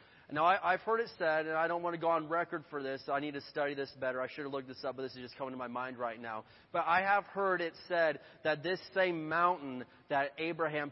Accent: American